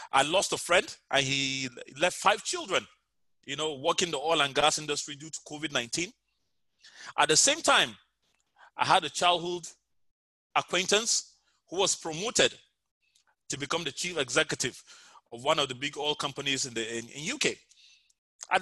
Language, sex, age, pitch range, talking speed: English, male, 30-49, 150-200 Hz, 165 wpm